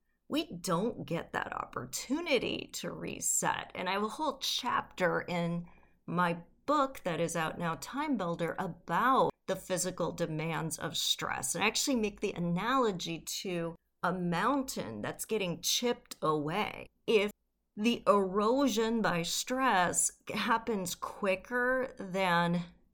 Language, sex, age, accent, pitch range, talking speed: English, female, 40-59, American, 170-225 Hz, 130 wpm